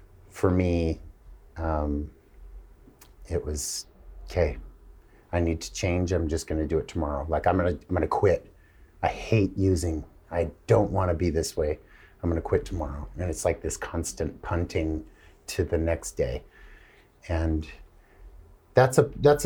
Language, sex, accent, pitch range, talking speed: English, male, American, 80-105 Hz, 155 wpm